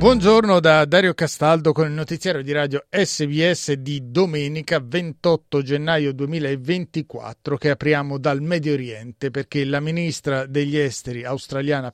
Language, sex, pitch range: Italian, male, 140-170 Hz